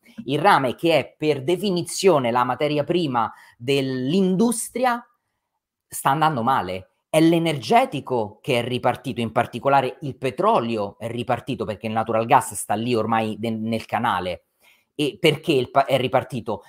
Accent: native